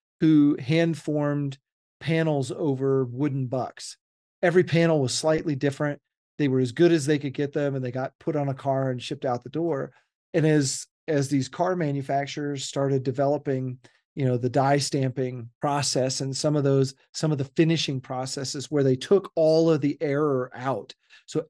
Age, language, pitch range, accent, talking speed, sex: 40-59, English, 135-165 Hz, American, 180 wpm, male